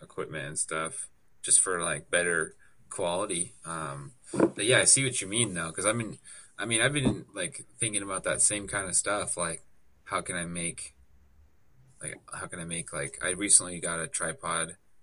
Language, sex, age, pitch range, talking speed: English, male, 20-39, 80-105 Hz, 190 wpm